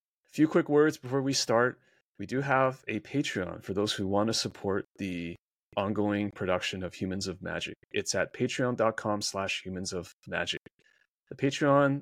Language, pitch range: English, 100-130 Hz